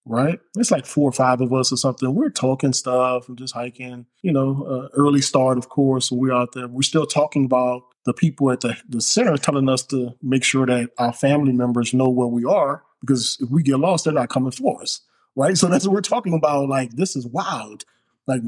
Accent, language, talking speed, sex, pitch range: American, English, 230 wpm, male, 135-205 Hz